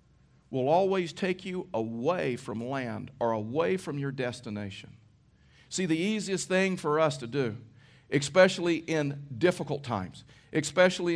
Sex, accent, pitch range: male, American, 125-175 Hz